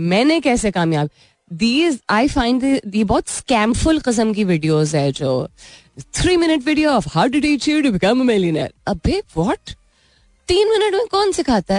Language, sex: Hindi, female